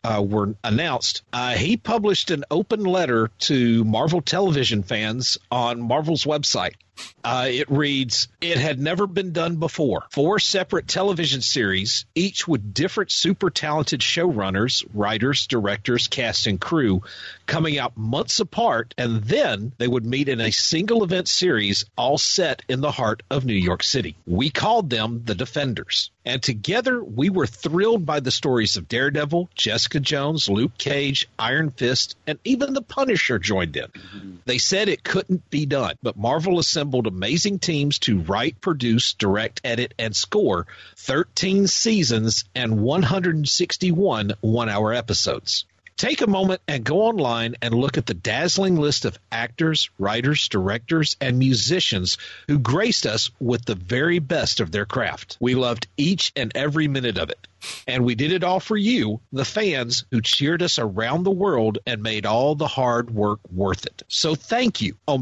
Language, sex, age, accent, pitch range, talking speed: English, male, 50-69, American, 115-165 Hz, 165 wpm